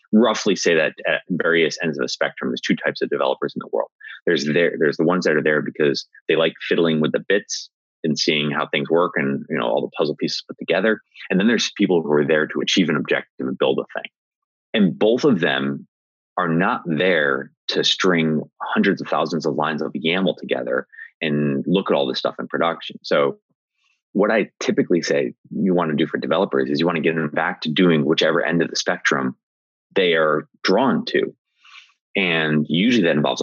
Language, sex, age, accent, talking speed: English, male, 30-49, American, 215 wpm